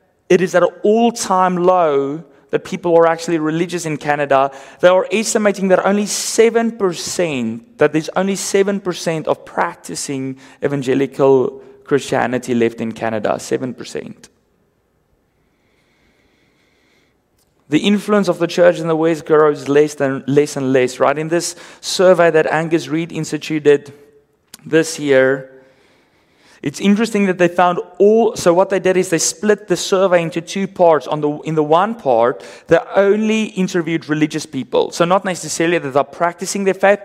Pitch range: 145-190 Hz